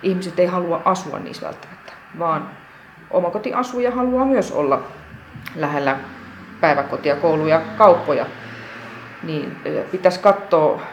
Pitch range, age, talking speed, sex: 155-185 Hz, 30-49, 100 wpm, female